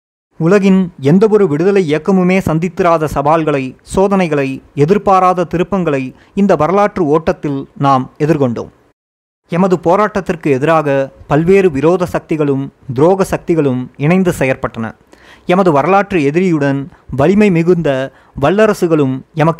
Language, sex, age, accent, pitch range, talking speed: Tamil, male, 30-49, native, 140-180 Hz, 90 wpm